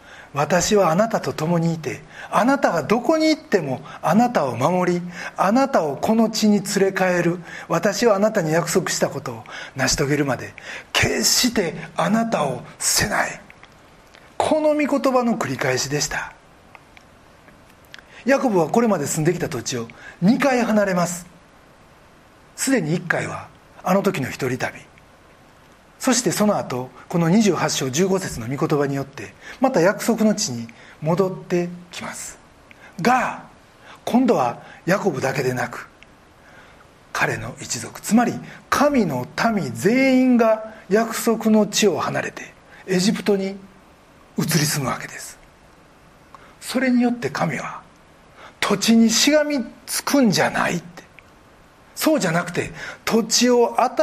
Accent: native